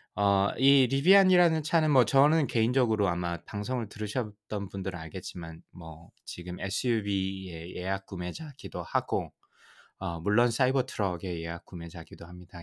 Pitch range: 90-130 Hz